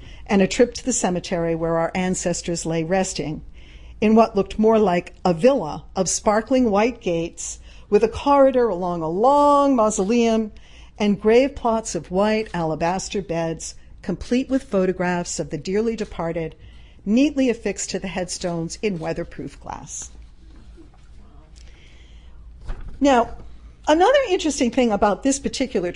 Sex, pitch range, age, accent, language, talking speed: female, 165-220 Hz, 50-69, American, English, 135 wpm